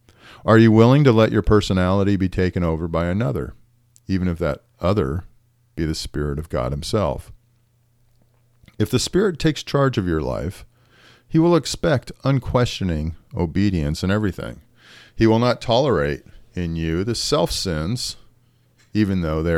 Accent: American